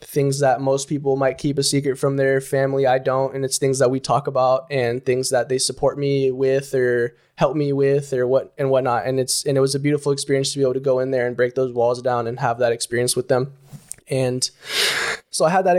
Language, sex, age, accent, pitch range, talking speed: English, male, 20-39, American, 130-145 Hz, 250 wpm